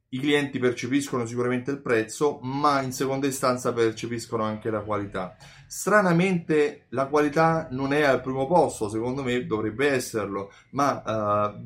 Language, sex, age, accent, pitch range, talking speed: Italian, male, 30-49, native, 110-135 Hz, 145 wpm